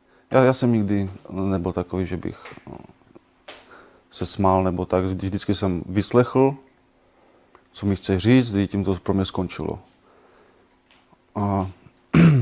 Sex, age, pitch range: male, 30-49, 95-110 Hz